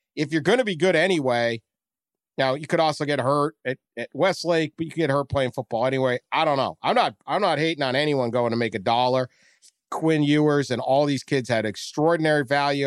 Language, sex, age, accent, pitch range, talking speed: English, male, 50-69, American, 125-160 Hz, 225 wpm